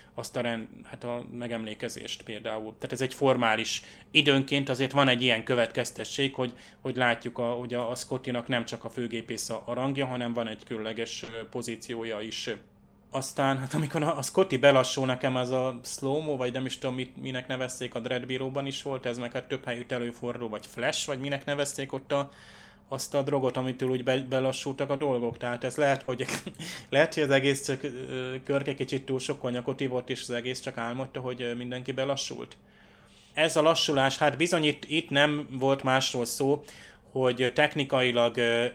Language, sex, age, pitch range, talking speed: Hungarian, male, 20-39, 120-135 Hz, 180 wpm